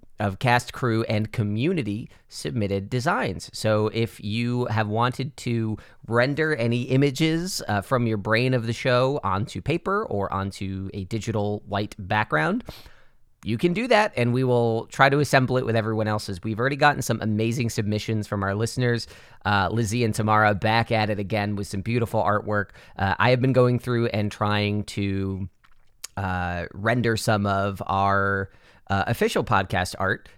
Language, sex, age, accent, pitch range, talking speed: English, male, 30-49, American, 100-125 Hz, 165 wpm